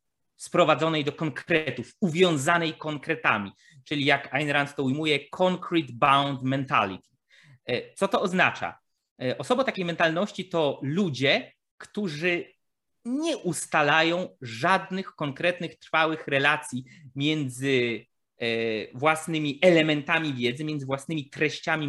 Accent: native